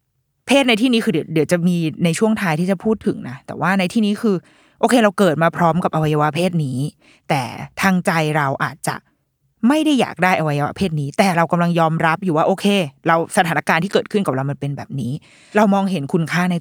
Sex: female